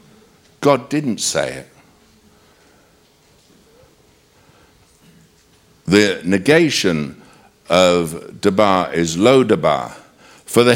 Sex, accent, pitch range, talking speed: male, British, 100-150 Hz, 65 wpm